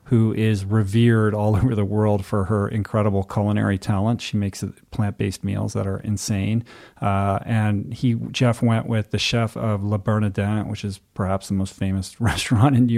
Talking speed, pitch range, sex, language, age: 180 wpm, 100-115 Hz, male, English, 40-59